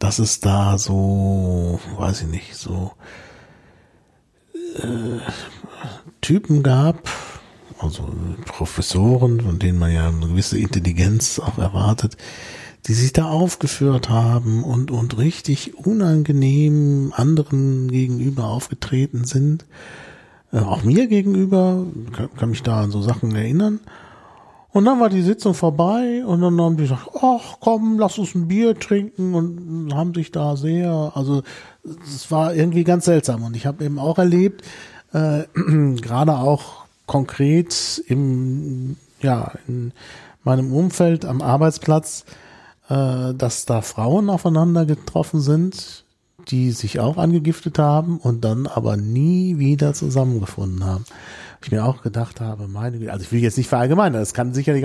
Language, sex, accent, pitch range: German, male, German, 115-160 Hz